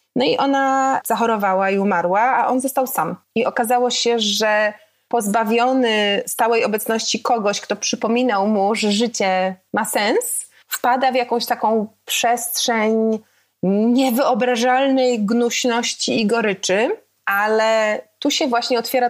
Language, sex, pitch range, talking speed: Polish, female, 210-245 Hz, 125 wpm